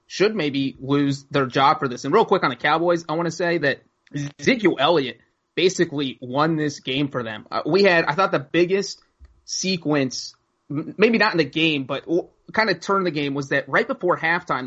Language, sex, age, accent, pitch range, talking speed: English, male, 30-49, American, 135-165 Hz, 200 wpm